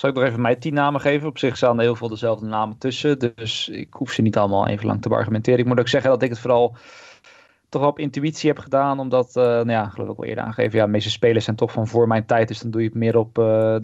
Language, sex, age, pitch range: Dutch, male, 20-39, 110-135 Hz